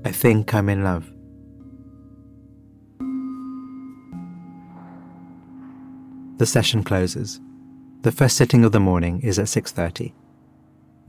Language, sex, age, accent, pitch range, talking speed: English, male, 30-49, British, 90-120 Hz, 90 wpm